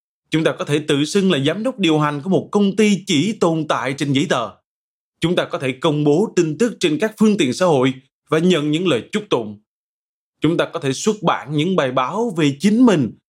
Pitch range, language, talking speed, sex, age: 145-195 Hz, Vietnamese, 240 wpm, male, 20-39